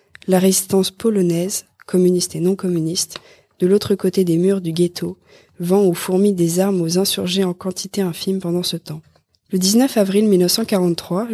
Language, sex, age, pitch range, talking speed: French, female, 20-39, 175-200 Hz, 160 wpm